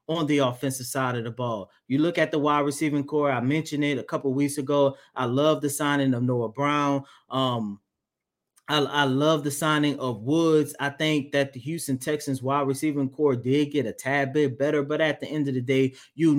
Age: 20-39